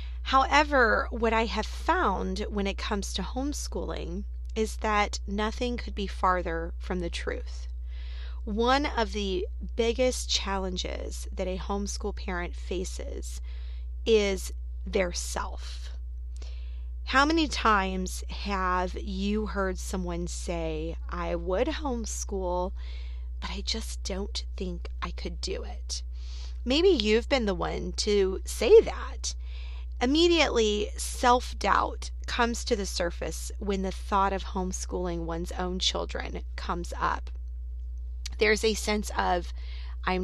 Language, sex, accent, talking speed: English, female, American, 120 wpm